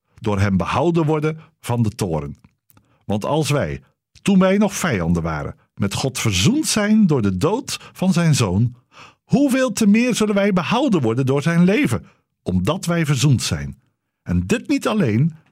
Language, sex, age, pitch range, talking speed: Dutch, male, 50-69, 110-180 Hz, 165 wpm